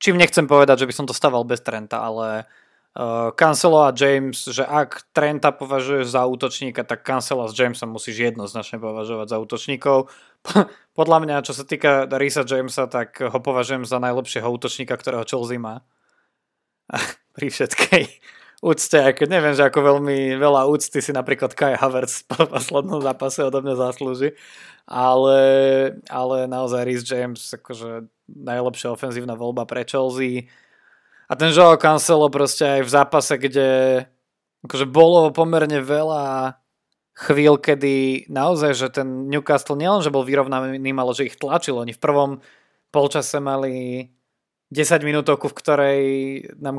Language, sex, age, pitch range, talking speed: Slovak, male, 20-39, 130-150 Hz, 145 wpm